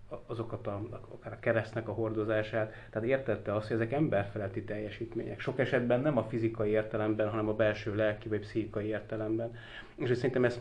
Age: 30-49